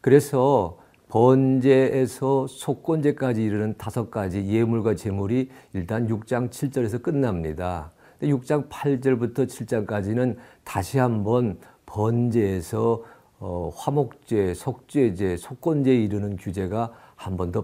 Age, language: 50-69, Korean